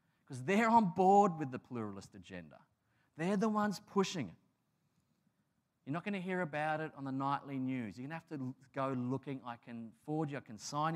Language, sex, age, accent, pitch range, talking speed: English, male, 30-49, Australian, 125-165 Hz, 210 wpm